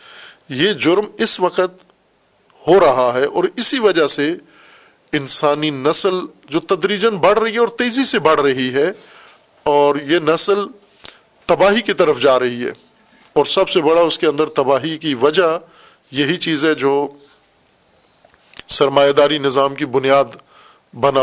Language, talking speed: Urdu, 150 wpm